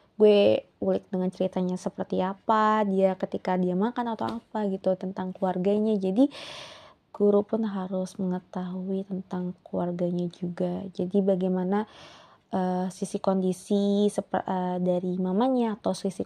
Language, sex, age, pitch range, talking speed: Indonesian, female, 20-39, 185-205 Hz, 125 wpm